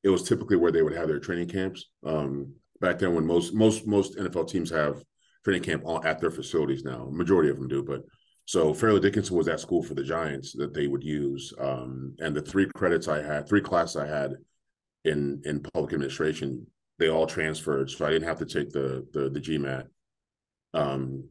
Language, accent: English, American